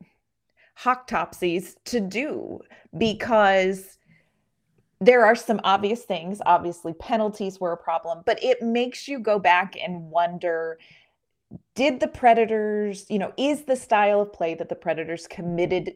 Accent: American